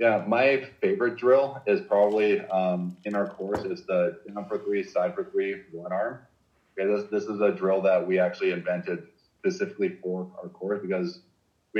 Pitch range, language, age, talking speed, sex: 90-130 Hz, English, 30-49, 185 wpm, male